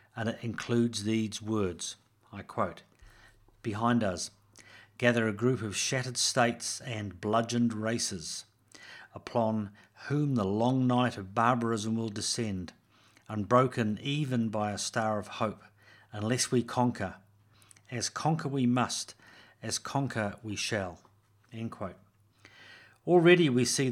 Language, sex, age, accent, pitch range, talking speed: English, male, 50-69, British, 105-125 Hz, 125 wpm